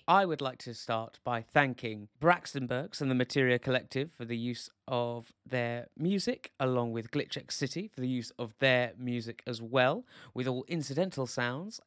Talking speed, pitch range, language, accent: 180 wpm, 120-140 Hz, English, British